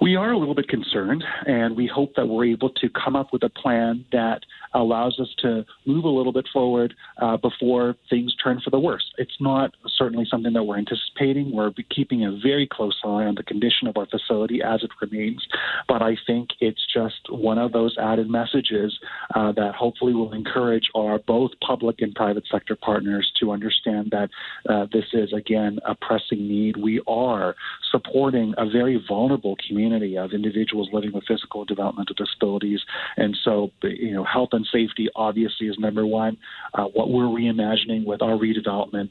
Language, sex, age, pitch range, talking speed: English, male, 40-59, 105-120 Hz, 185 wpm